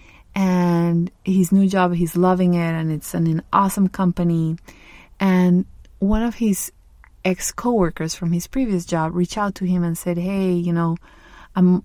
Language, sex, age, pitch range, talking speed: English, female, 30-49, 170-195 Hz, 165 wpm